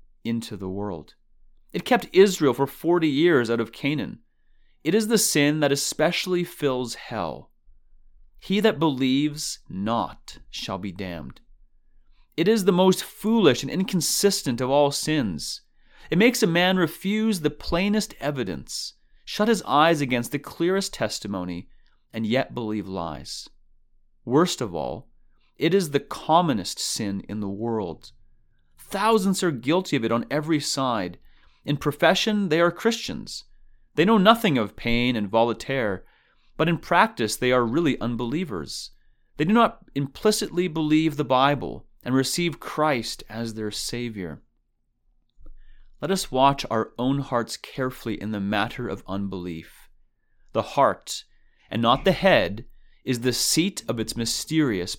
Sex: male